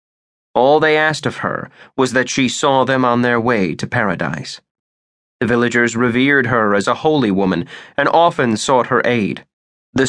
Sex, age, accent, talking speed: male, 30-49, American, 170 wpm